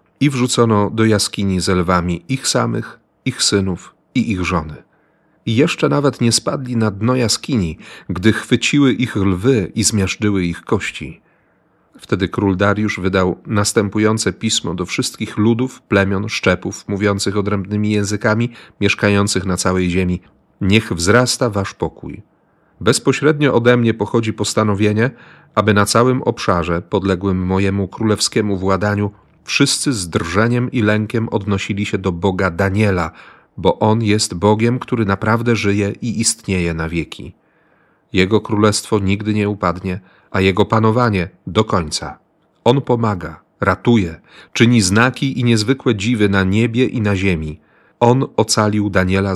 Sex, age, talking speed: male, 40-59, 135 wpm